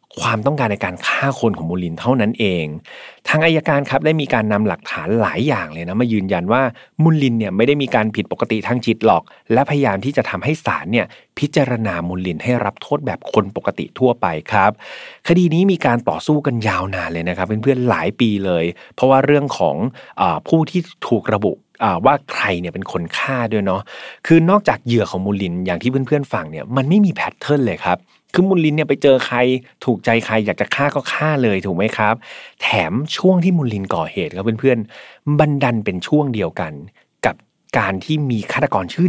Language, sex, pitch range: Thai, male, 100-145 Hz